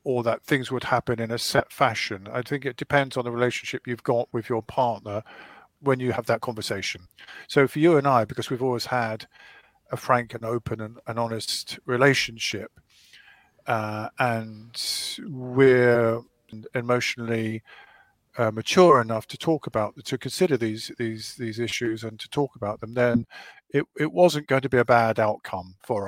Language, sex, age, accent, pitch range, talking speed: English, male, 50-69, British, 115-130 Hz, 175 wpm